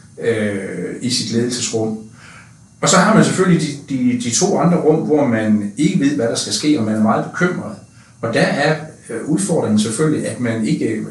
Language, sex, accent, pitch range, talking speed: Danish, male, native, 110-155 Hz, 190 wpm